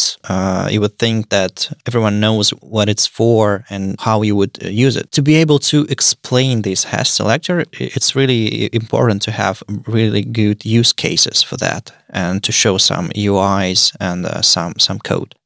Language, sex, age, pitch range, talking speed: English, male, 20-39, 100-130 Hz, 180 wpm